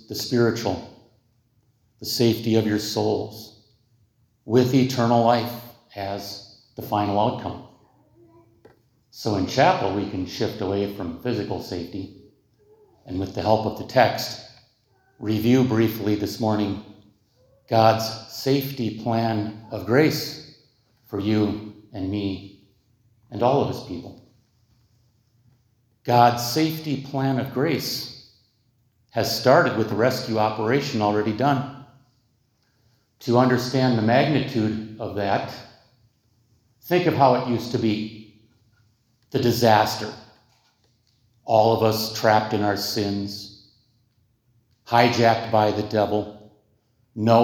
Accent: American